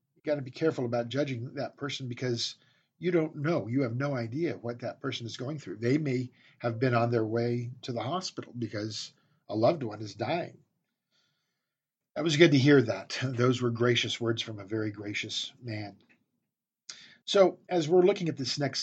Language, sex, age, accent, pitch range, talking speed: English, male, 50-69, American, 115-150 Hz, 190 wpm